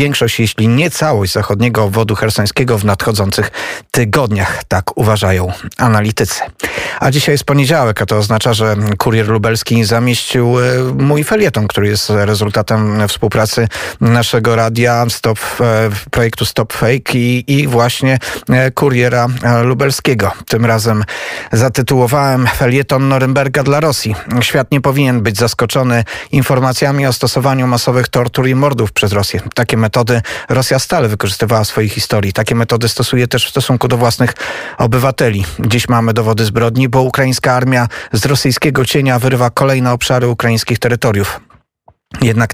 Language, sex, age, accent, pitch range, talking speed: Polish, male, 40-59, native, 115-130 Hz, 140 wpm